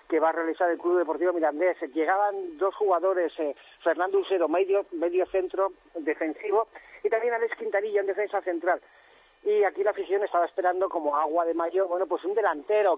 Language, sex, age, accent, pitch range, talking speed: Spanish, male, 40-59, Spanish, 165-200 Hz, 180 wpm